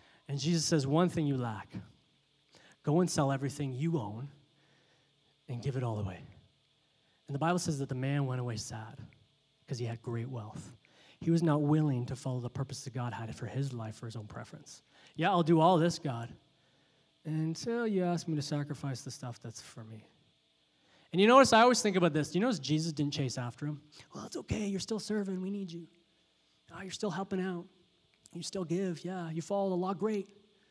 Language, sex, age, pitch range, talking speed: English, male, 30-49, 130-170 Hz, 205 wpm